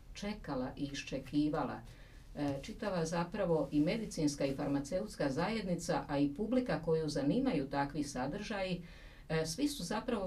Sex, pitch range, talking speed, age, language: female, 145-225 Hz, 130 wpm, 50-69, Croatian